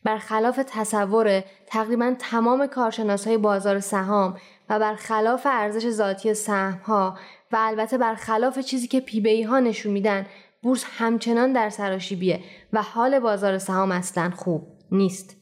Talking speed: 125 wpm